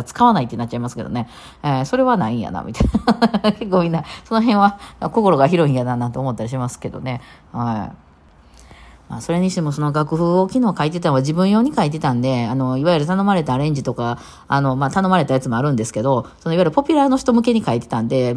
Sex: female